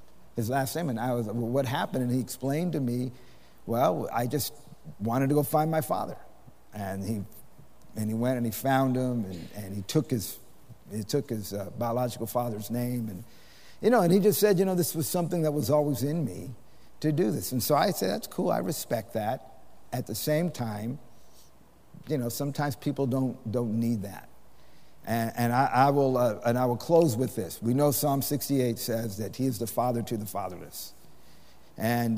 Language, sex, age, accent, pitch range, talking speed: English, male, 50-69, American, 110-135 Hz, 205 wpm